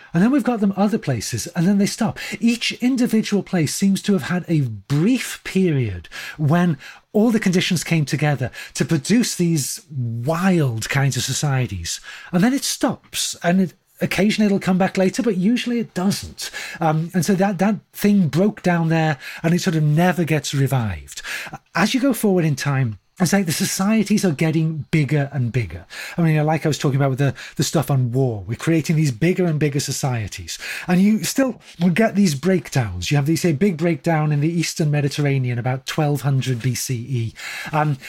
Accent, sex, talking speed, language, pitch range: British, male, 190 wpm, English, 145-190 Hz